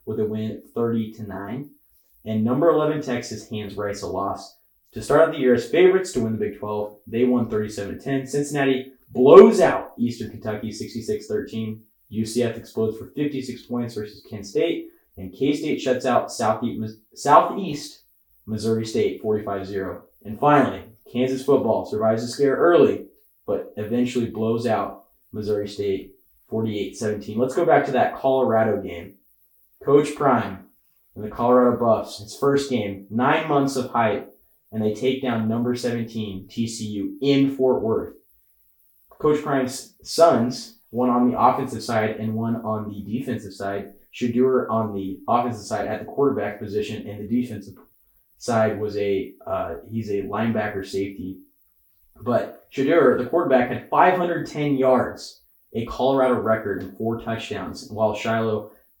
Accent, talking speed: American, 145 wpm